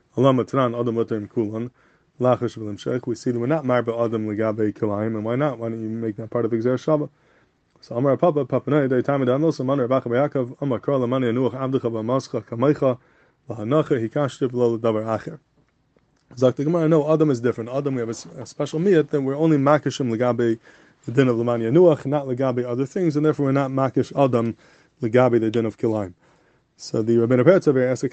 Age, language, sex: 20-39, English, male